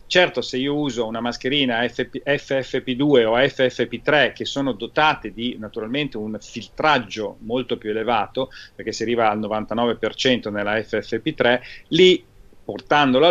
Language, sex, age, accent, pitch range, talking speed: Italian, male, 40-59, native, 125-165 Hz, 125 wpm